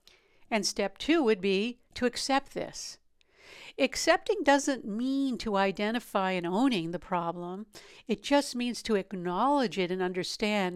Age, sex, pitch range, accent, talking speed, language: 60-79, female, 180-225 Hz, American, 140 wpm, English